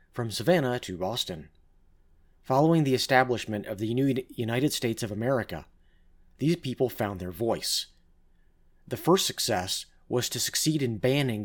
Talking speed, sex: 140 wpm, male